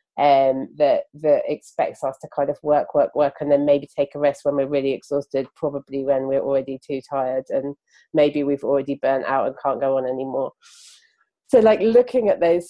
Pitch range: 140-175 Hz